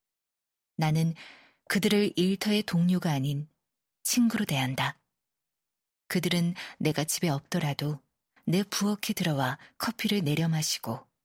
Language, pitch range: Korean, 150-195 Hz